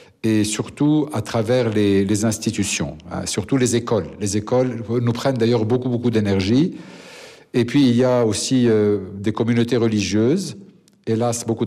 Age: 60-79